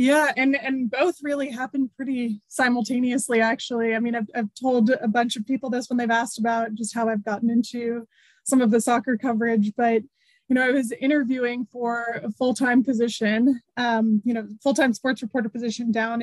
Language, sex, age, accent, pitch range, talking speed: English, female, 20-39, American, 225-255 Hz, 190 wpm